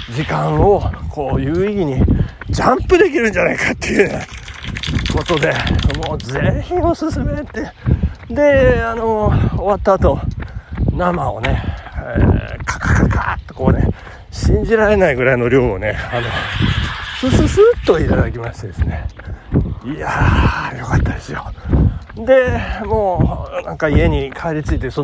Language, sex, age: Japanese, male, 40-59